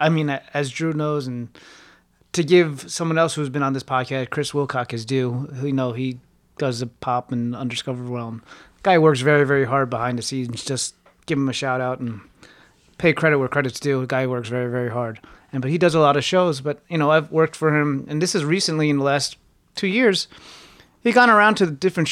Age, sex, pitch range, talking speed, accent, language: 30-49, male, 125-155 Hz, 235 wpm, American, English